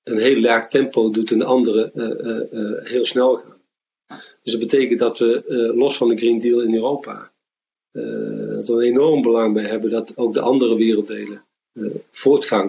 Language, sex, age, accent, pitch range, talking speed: Dutch, male, 40-59, Dutch, 110-130 Hz, 190 wpm